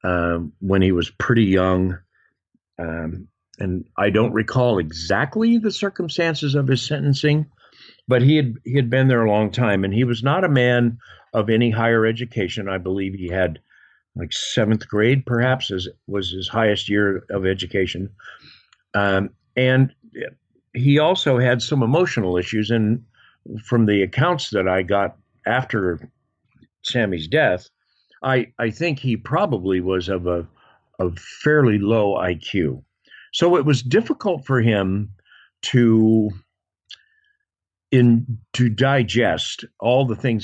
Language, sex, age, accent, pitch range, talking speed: English, male, 50-69, American, 95-130 Hz, 140 wpm